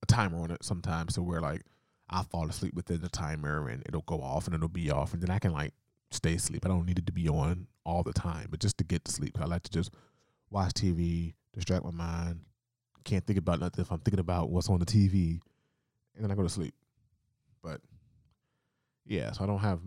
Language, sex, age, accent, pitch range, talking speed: English, male, 20-39, American, 85-110 Hz, 235 wpm